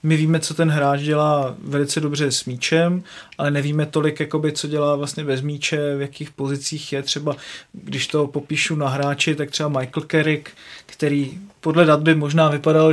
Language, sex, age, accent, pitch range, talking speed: Czech, male, 30-49, native, 145-160 Hz, 175 wpm